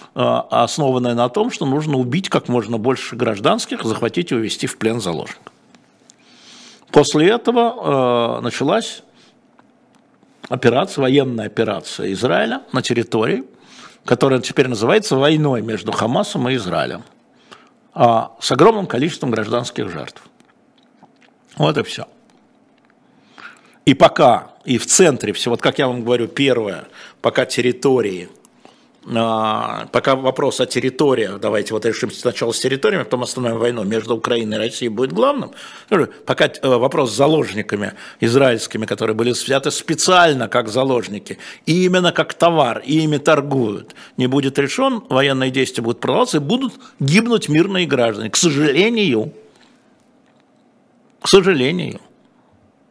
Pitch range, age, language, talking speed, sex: 120-180 Hz, 50-69, Russian, 125 wpm, male